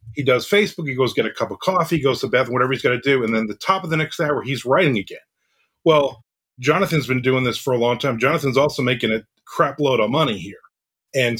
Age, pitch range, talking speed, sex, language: 40-59, 125-155 Hz, 245 wpm, male, English